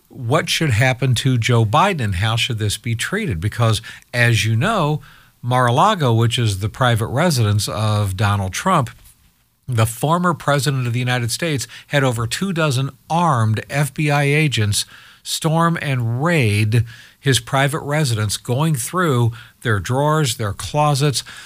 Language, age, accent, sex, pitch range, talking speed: English, 50-69, American, male, 110-145 Hz, 140 wpm